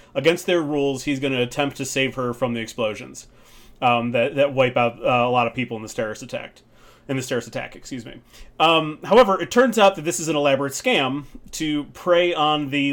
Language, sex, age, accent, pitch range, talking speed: English, male, 30-49, American, 120-150 Hz, 225 wpm